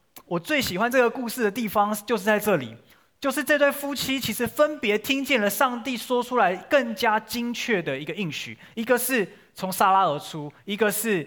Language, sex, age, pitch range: Chinese, male, 20-39, 130-205 Hz